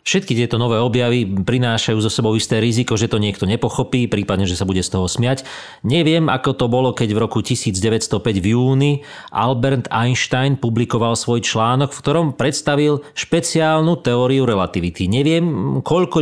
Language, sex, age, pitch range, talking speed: Slovak, male, 40-59, 110-140 Hz, 160 wpm